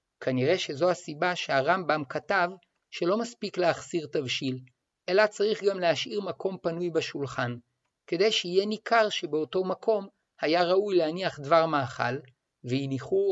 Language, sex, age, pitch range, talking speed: Hebrew, male, 50-69, 150-195 Hz, 120 wpm